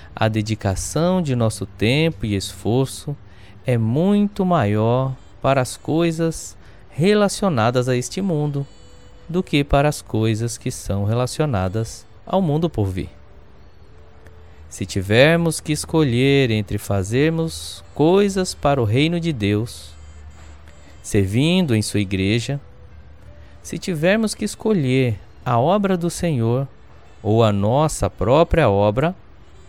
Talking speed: 115 wpm